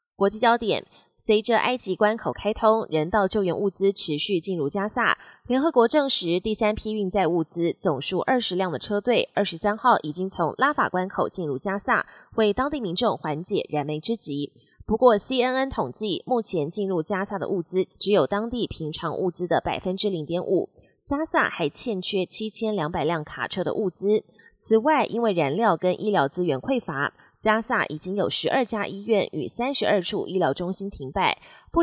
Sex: female